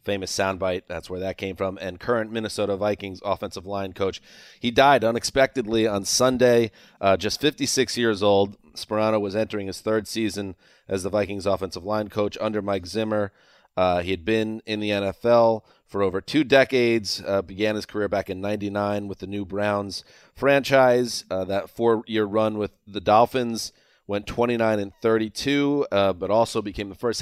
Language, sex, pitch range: English, male, 95-110 Hz